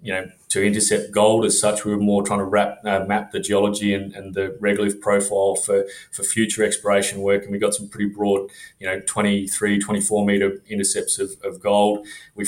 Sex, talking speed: male, 205 wpm